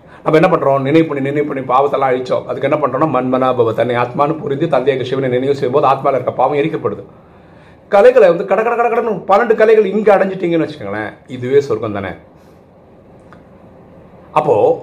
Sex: male